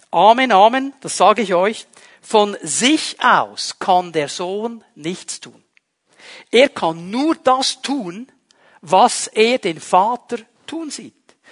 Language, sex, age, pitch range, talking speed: German, male, 60-79, 195-260 Hz, 130 wpm